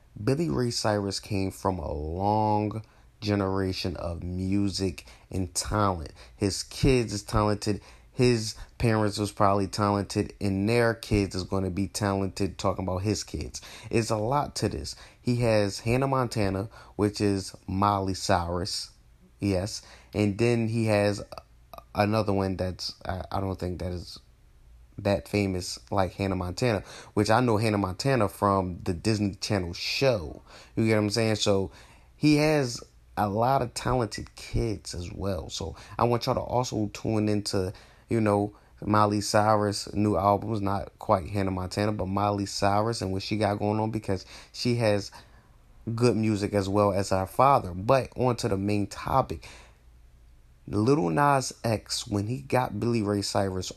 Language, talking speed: English, 155 wpm